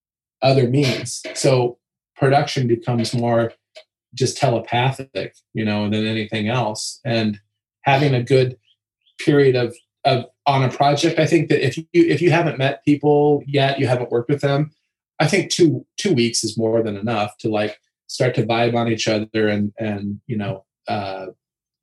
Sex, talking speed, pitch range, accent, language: male, 170 wpm, 115-145 Hz, American, English